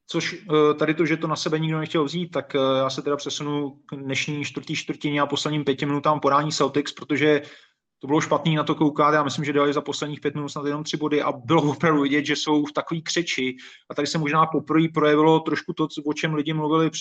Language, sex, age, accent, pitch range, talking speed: Czech, male, 30-49, native, 145-160 Hz, 230 wpm